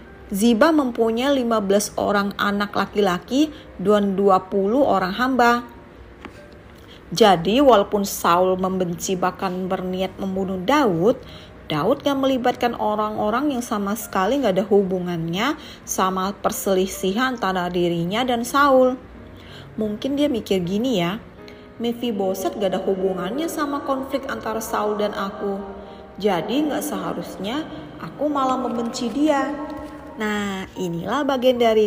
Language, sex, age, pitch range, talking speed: Indonesian, female, 30-49, 195-270 Hz, 115 wpm